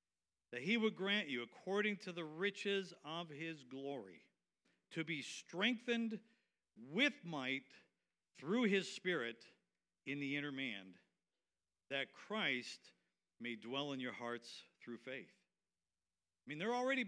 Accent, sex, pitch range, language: American, male, 140-220 Hz, English